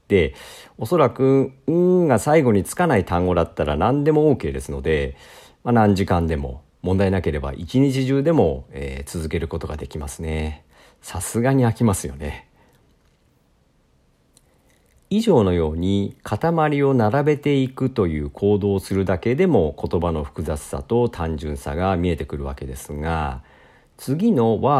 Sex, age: male, 50-69